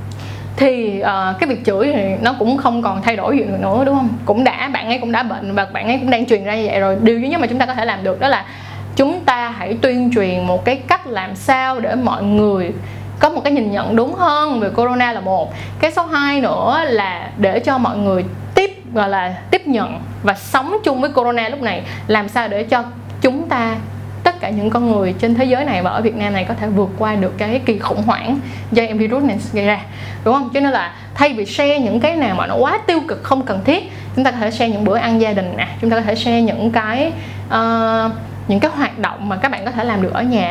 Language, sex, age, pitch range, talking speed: Vietnamese, female, 20-39, 205-265 Hz, 255 wpm